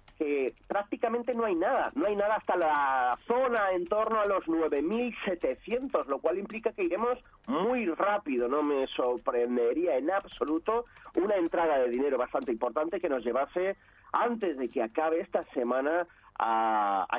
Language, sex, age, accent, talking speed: Spanish, male, 40-59, Spanish, 155 wpm